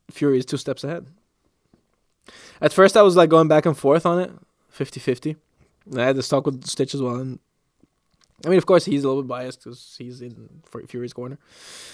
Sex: male